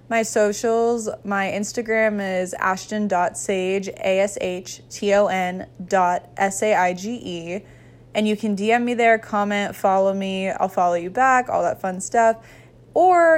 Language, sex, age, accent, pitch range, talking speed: English, female, 20-39, American, 190-240 Hz, 120 wpm